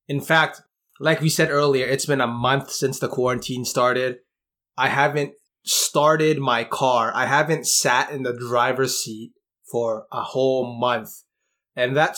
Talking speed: 160 wpm